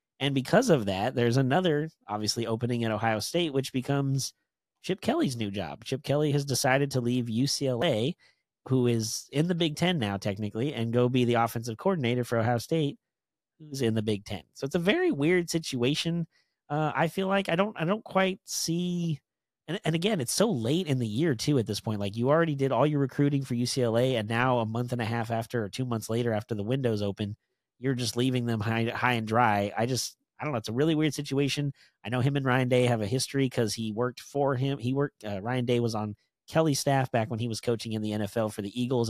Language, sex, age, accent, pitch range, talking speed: English, male, 30-49, American, 115-145 Hz, 230 wpm